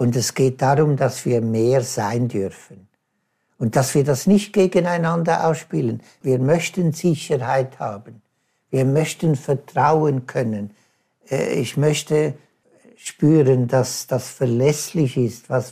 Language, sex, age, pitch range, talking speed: German, male, 60-79, 125-155 Hz, 120 wpm